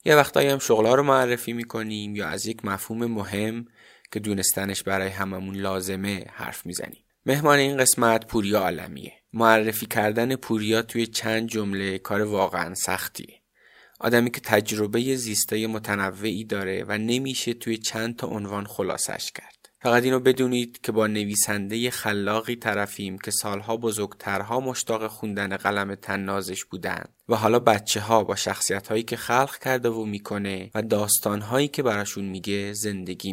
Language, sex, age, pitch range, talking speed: Persian, male, 20-39, 100-120 Hz, 150 wpm